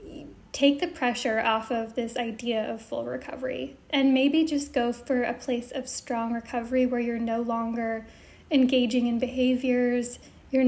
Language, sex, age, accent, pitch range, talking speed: English, female, 10-29, American, 235-270 Hz, 155 wpm